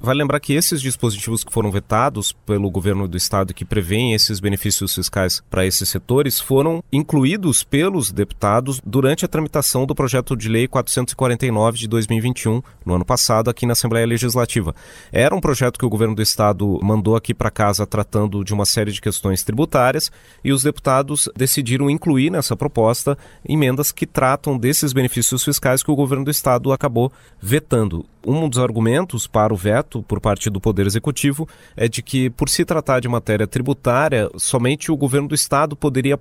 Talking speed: 175 wpm